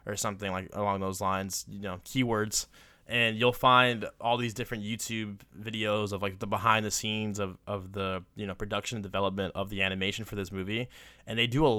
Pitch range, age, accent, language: 100-130 Hz, 20-39, American, English